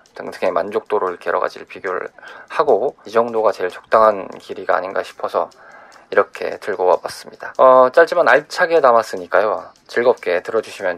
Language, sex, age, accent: Korean, male, 20-39, native